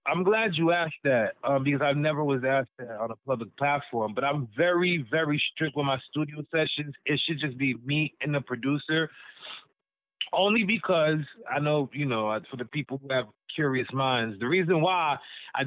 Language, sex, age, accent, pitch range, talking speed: English, male, 20-39, American, 140-170 Hz, 190 wpm